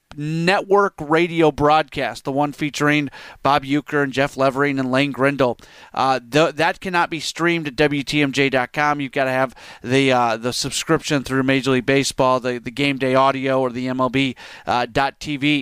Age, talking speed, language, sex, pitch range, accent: 30-49, 165 wpm, English, male, 130-155 Hz, American